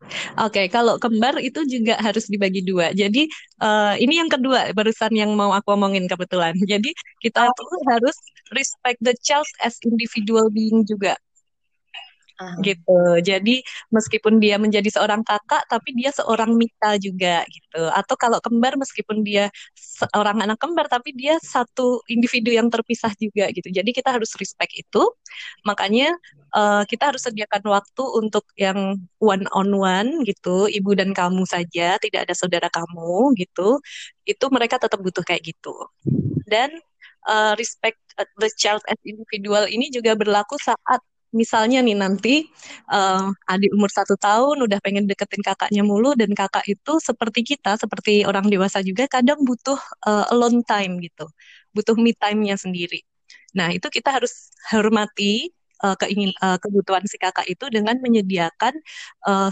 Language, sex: Indonesian, female